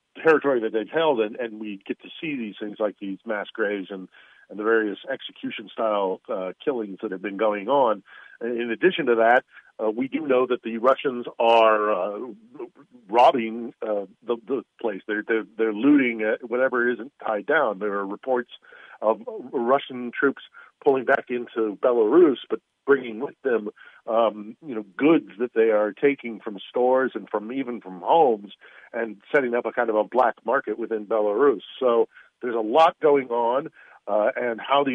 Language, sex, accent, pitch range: English, male, American, 105-135 Hz